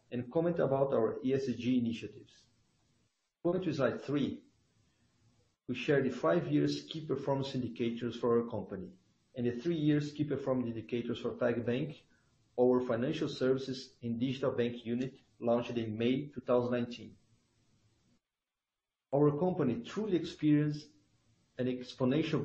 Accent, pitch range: Brazilian, 120-145 Hz